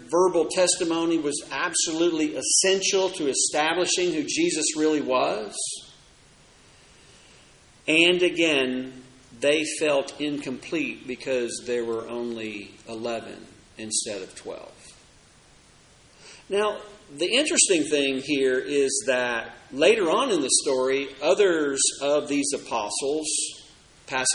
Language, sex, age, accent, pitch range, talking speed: English, male, 50-69, American, 130-210 Hz, 100 wpm